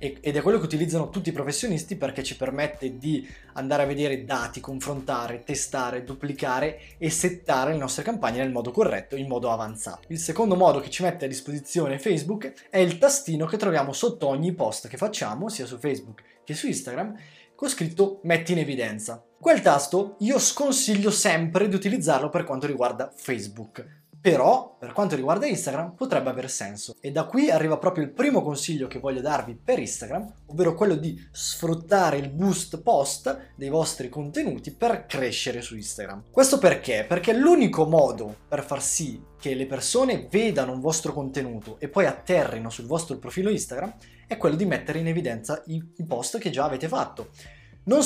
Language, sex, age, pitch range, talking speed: Italian, male, 20-39, 135-185 Hz, 175 wpm